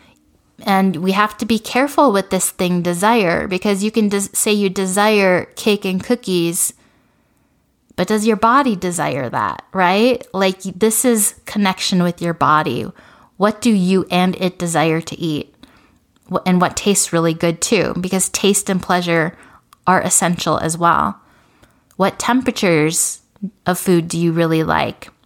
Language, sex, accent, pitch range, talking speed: English, female, American, 175-210 Hz, 155 wpm